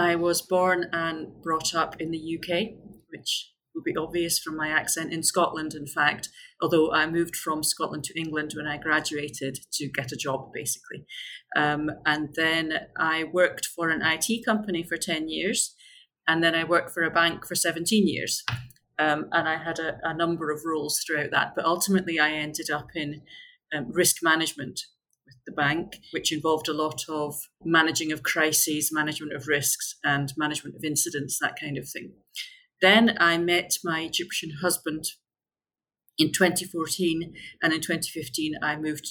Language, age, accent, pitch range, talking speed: English, 30-49, British, 150-170 Hz, 170 wpm